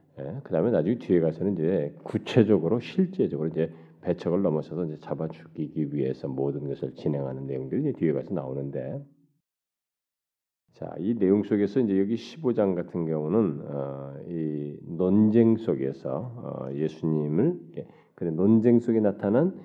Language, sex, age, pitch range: Korean, male, 40-59, 75-100 Hz